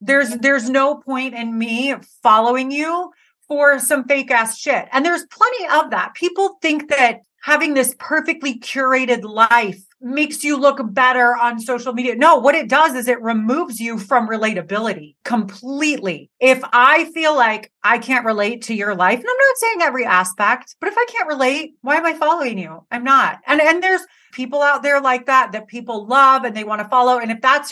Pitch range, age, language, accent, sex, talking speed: 230-290 Hz, 30-49, English, American, female, 195 wpm